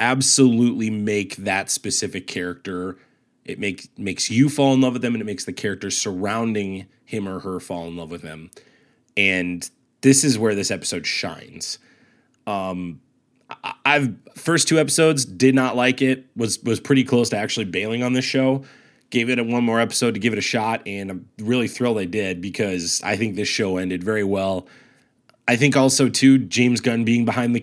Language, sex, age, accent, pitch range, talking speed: English, male, 20-39, American, 100-130 Hz, 195 wpm